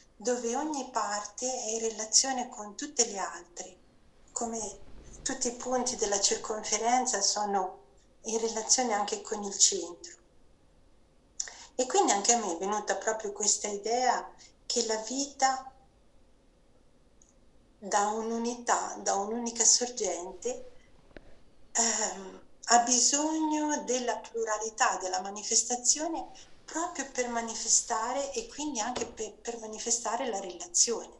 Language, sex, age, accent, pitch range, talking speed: Italian, female, 50-69, native, 205-255 Hz, 115 wpm